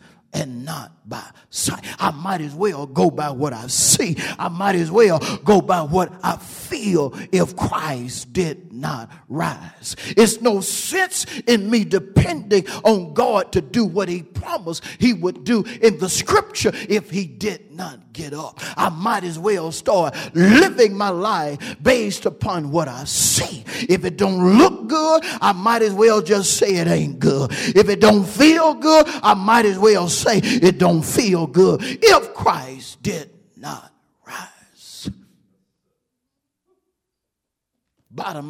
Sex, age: male, 40-59